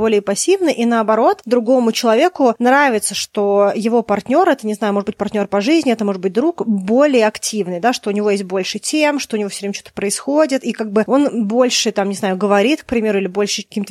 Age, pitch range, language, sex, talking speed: 20-39, 215-260 Hz, Russian, female, 225 wpm